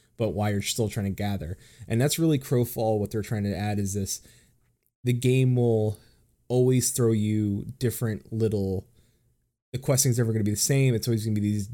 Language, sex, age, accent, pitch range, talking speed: English, male, 20-39, American, 105-120 Hz, 195 wpm